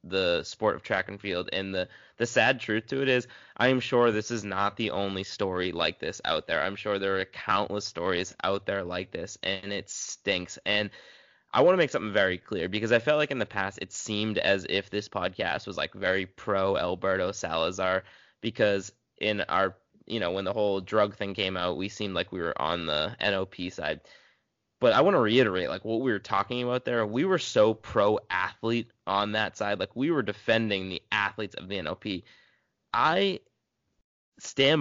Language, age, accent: English, 20-39, American